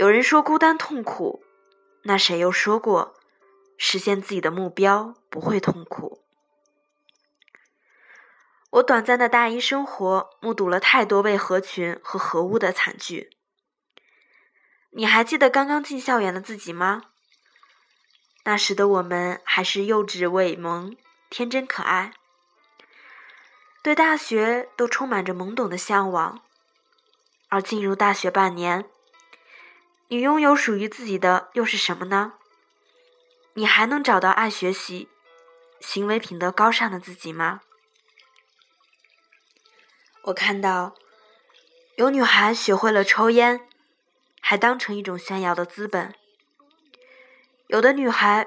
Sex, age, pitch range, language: female, 20-39, 190-265 Hz, Chinese